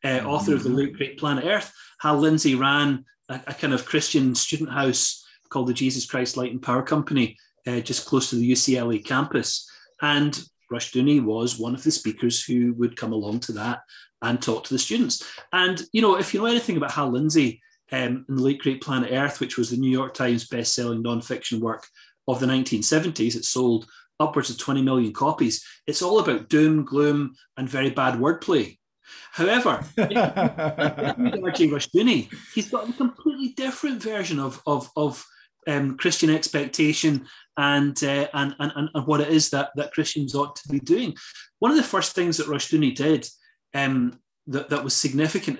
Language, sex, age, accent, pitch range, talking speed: English, male, 30-49, British, 125-155 Hz, 180 wpm